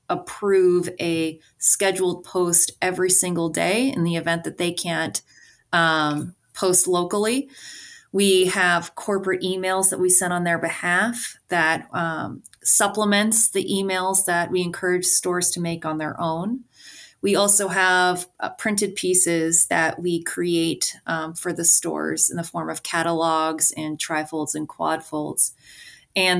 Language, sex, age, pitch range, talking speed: English, female, 30-49, 165-185 Hz, 145 wpm